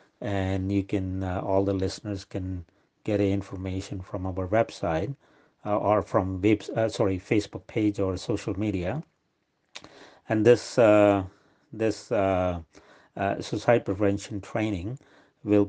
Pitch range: 95-110 Hz